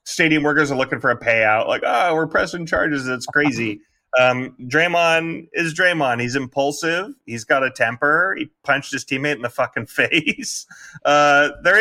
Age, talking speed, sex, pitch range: 30-49, 175 wpm, male, 125-175 Hz